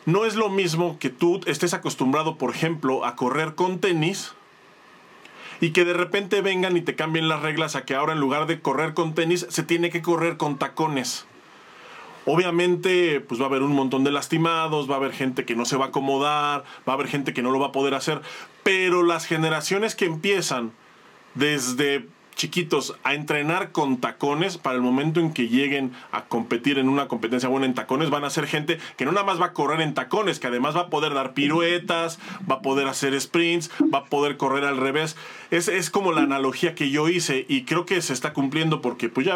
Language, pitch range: Spanish, 135-175 Hz